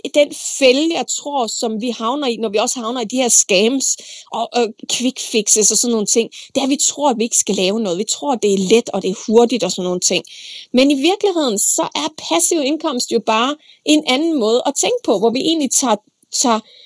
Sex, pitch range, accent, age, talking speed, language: female, 230-290 Hz, native, 30-49, 240 wpm, Danish